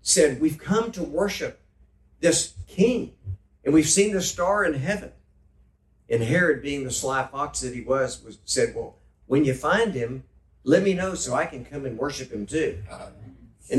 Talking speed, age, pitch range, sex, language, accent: 185 wpm, 50-69, 115-175 Hz, male, English, American